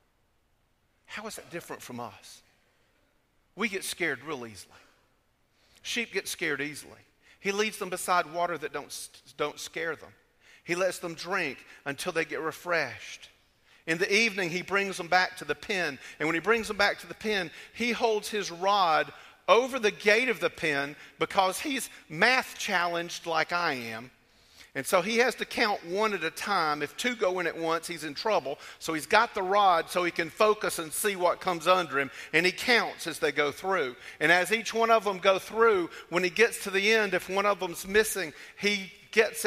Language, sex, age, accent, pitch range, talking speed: English, male, 50-69, American, 160-205 Hz, 200 wpm